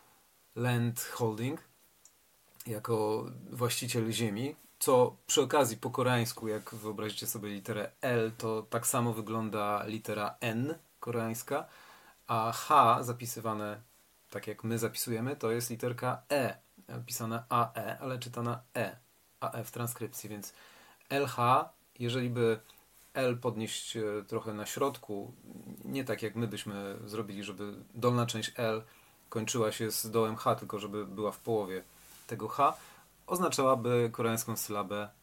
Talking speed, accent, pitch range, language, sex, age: 130 wpm, native, 110-125 Hz, Polish, male, 40-59